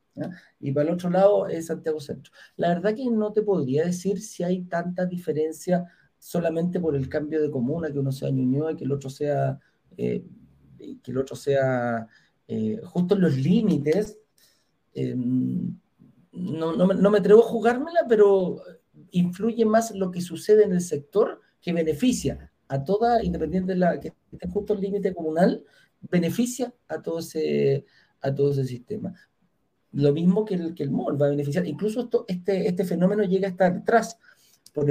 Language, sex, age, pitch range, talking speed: Spanish, male, 50-69, 140-190 Hz, 175 wpm